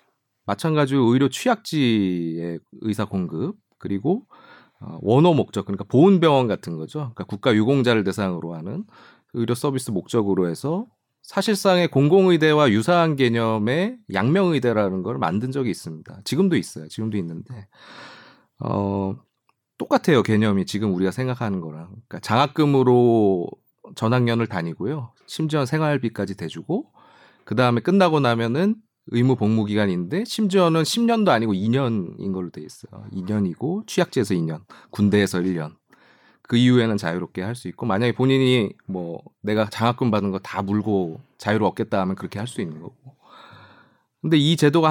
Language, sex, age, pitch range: Korean, male, 30-49, 100-150 Hz